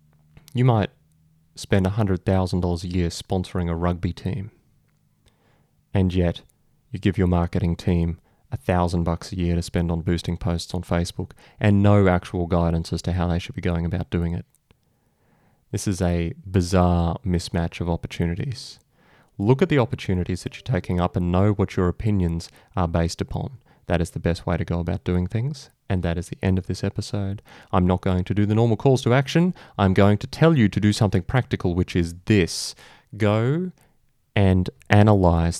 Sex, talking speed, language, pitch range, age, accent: male, 180 wpm, English, 85-110 Hz, 30-49, Australian